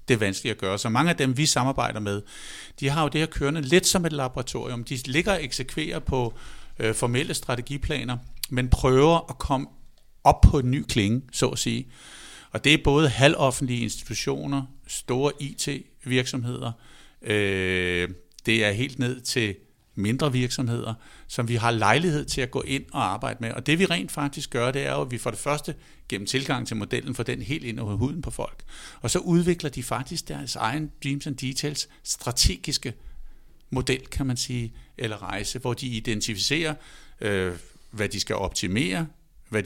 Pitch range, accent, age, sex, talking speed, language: 115-140 Hz, native, 60-79, male, 180 wpm, Danish